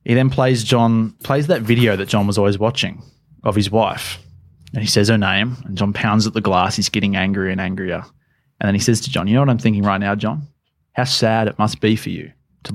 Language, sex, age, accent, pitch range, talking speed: English, male, 20-39, Australian, 100-130 Hz, 250 wpm